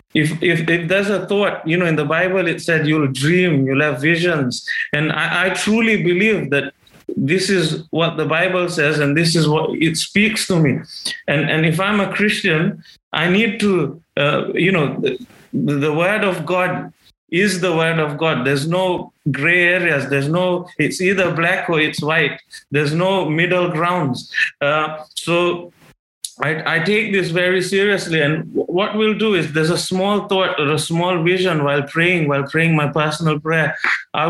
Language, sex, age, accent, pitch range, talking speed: English, male, 20-39, Indian, 150-180 Hz, 185 wpm